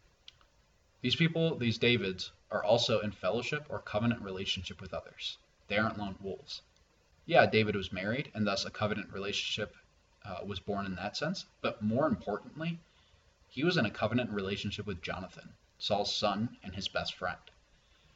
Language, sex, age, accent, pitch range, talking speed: English, male, 20-39, American, 95-115 Hz, 160 wpm